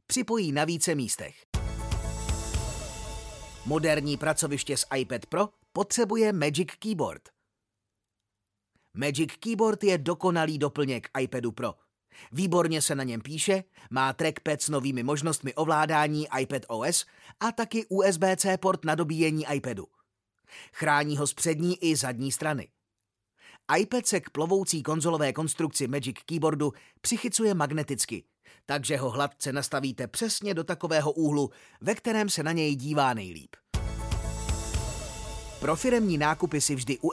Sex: male